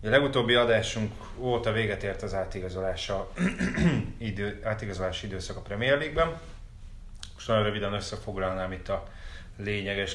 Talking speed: 120 wpm